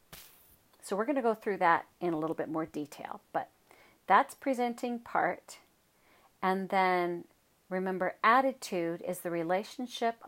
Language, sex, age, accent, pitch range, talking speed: English, female, 40-59, American, 175-230 Hz, 135 wpm